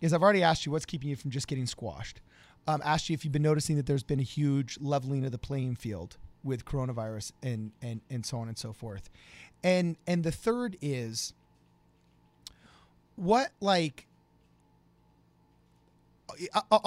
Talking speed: 165 wpm